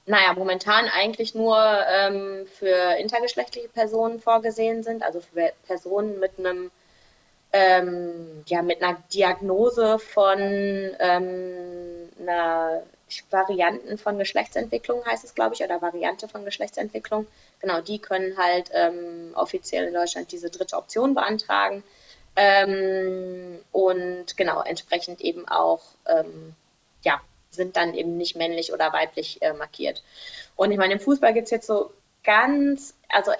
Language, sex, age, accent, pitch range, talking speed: German, female, 20-39, German, 185-215 Hz, 135 wpm